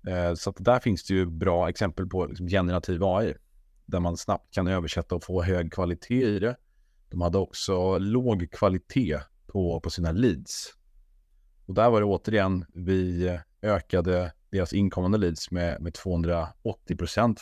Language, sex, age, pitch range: Swedish, male, 30-49, 85-100 Hz